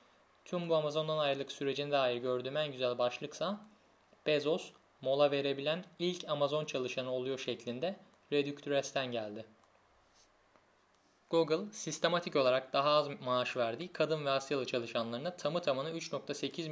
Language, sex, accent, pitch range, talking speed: Turkish, male, native, 125-160 Hz, 120 wpm